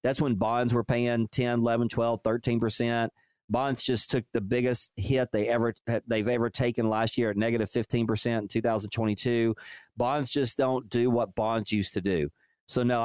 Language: English